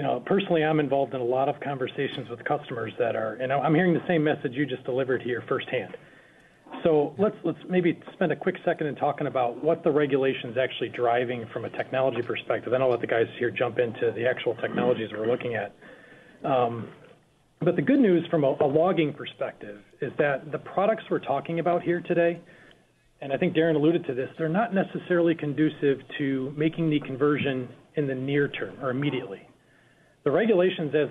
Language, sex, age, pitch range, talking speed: English, male, 40-59, 130-165 Hz, 200 wpm